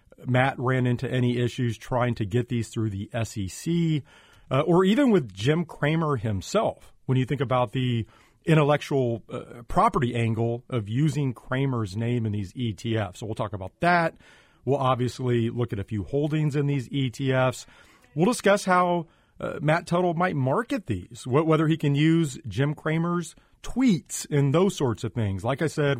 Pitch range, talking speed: 120-155 Hz, 175 wpm